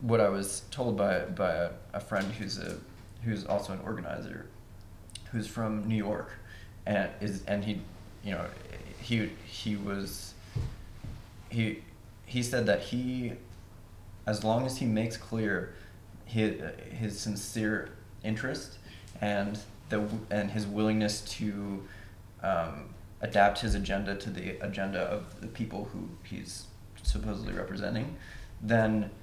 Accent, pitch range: American, 95-110 Hz